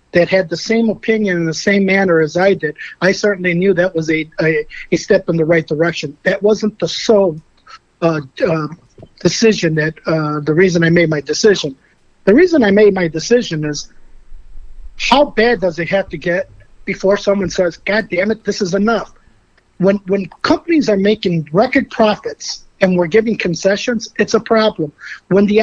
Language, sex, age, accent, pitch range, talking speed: English, male, 50-69, American, 170-205 Hz, 185 wpm